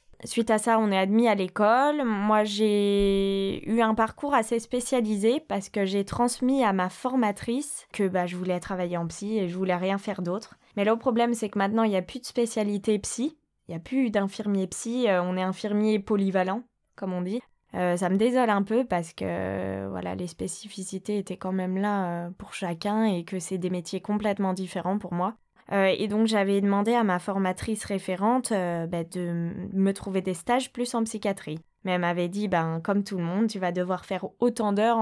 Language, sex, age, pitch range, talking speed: French, female, 10-29, 185-220 Hz, 205 wpm